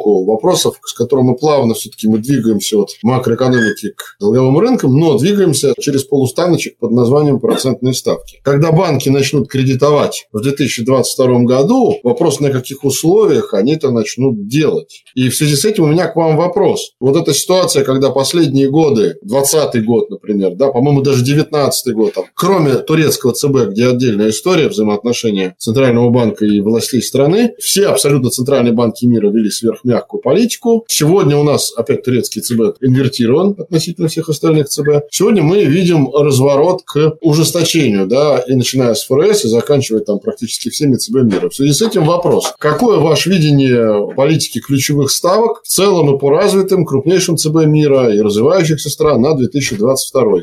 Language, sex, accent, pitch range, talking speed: Russian, male, native, 125-165 Hz, 160 wpm